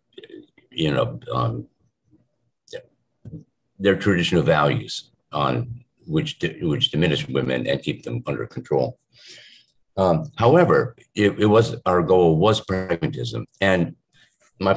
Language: English